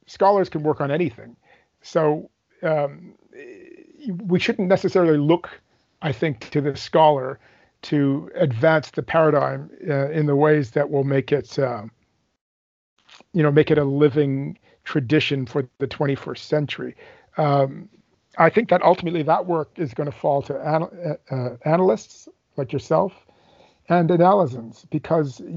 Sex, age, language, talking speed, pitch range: male, 50-69, English, 140 wpm, 145-175 Hz